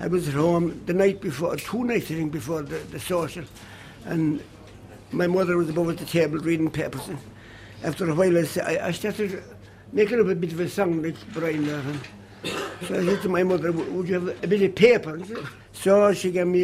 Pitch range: 165-240 Hz